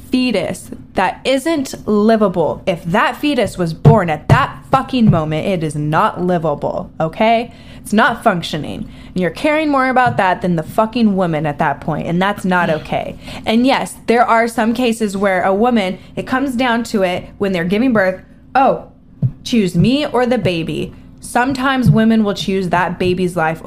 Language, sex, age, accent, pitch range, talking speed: English, female, 10-29, American, 185-250 Hz, 170 wpm